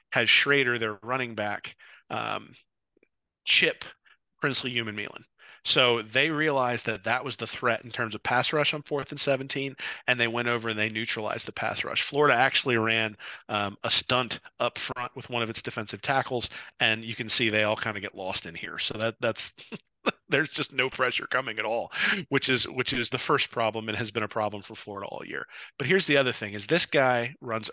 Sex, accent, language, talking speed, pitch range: male, American, English, 210 wpm, 110-135 Hz